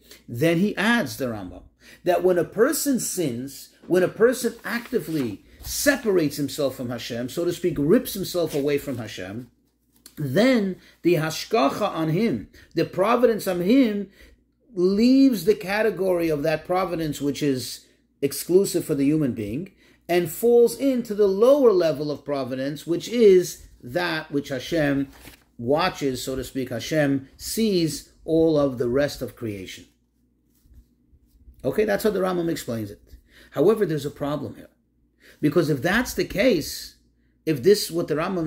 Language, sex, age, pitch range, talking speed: English, male, 40-59, 135-190 Hz, 150 wpm